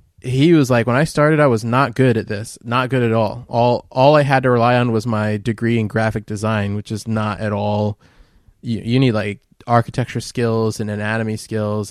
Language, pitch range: English, 105-120 Hz